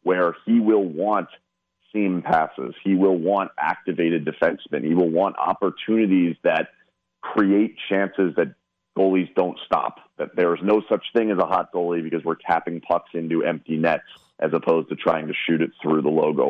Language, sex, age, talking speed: English, male, 40-59, 180 wpm